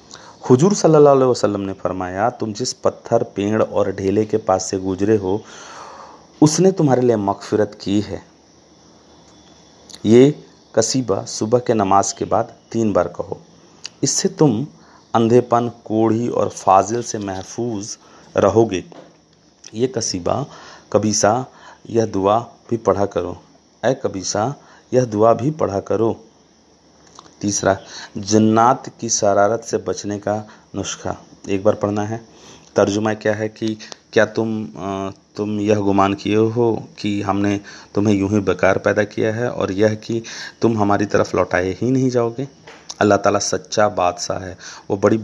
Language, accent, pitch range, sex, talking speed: Hindi, native, 100-115 Hz, male, 140 wpm